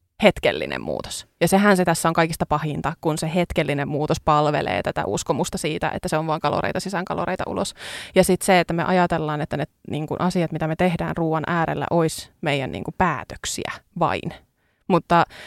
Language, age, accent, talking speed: Finnish, 20-39, native, 180 wpm